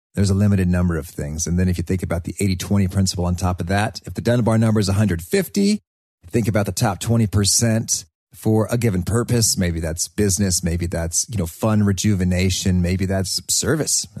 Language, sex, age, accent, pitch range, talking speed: English, male, 40-59, American, 85-105 Hz, 195 wpm